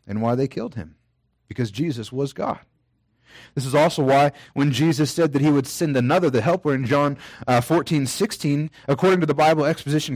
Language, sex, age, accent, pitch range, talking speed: English, male, 30-49, American, 120-155 Hz, 195 wpm